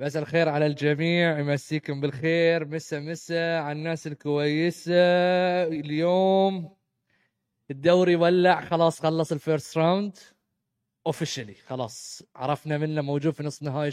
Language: Arabic